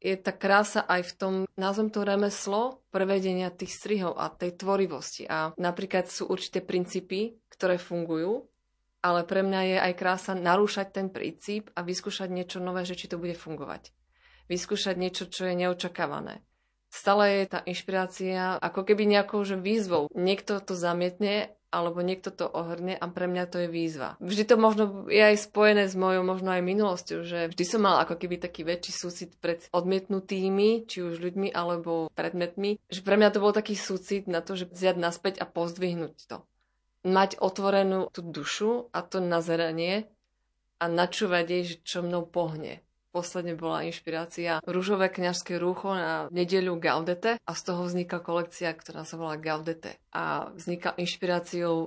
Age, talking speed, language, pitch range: 30-49, 165 wpm, Slovak, 170-195 Hz